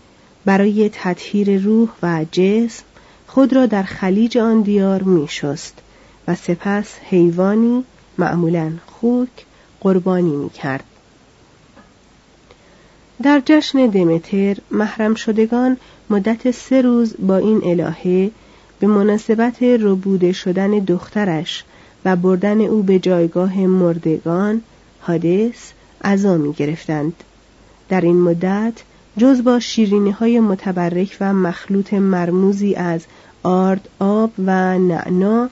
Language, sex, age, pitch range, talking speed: Persian, female, 40-59, 175-225 Hz, 100 wpm